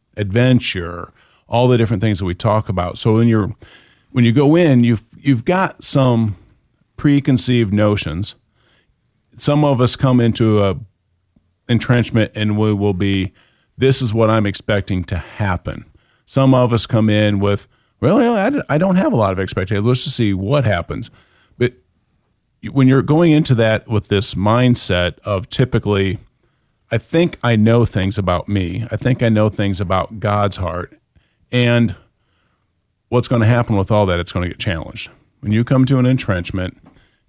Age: 40-59